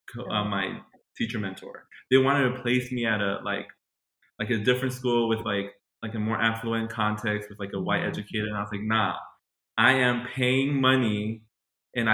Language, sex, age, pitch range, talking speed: English, male, 20-39, 105-125 Hz, 190 wpm